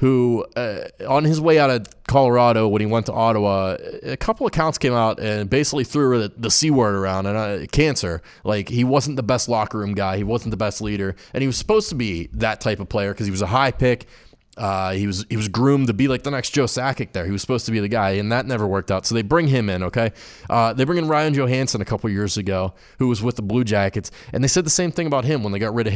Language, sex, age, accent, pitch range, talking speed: English, male, 20-39, American, 105-140 Hz, 275 wpm